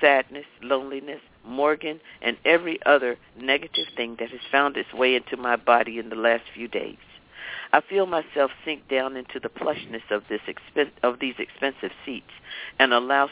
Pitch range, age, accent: 120-145 Hz, 50-69, American